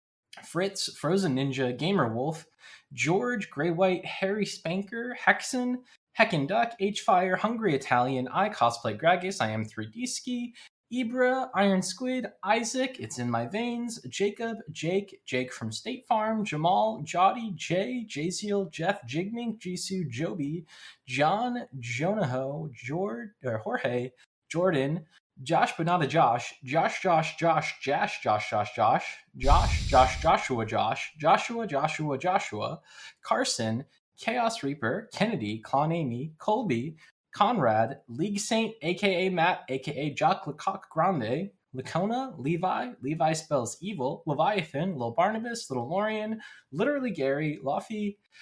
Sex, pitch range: male, 140-210 Hz